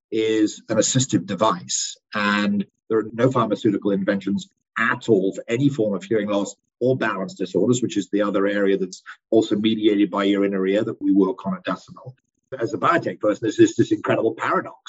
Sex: male